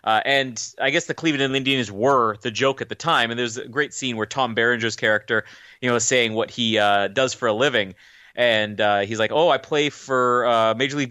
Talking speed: 245 wpm